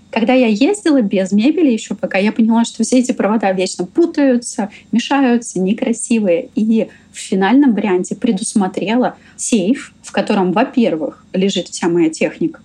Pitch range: 180-250 Hz